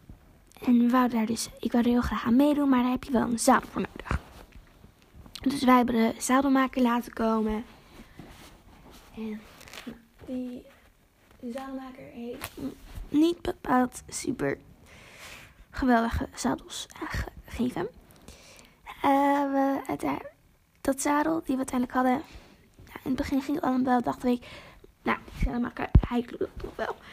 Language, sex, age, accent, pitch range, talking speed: Dutch, female, 20-39, Dutch, 240-270 Hz, 135 wpm